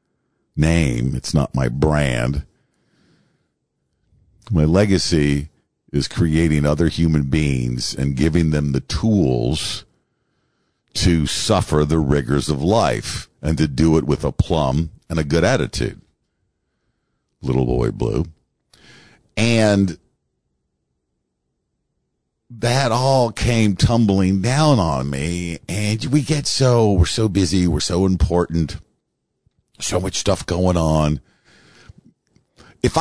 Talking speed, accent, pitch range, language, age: 110 wpm, American, 75-105 Hz, English, 50-69